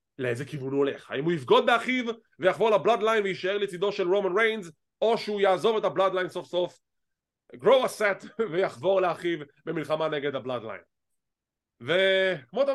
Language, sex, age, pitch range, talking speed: English, male, 20-39, 160-225 Hz, 135 wpm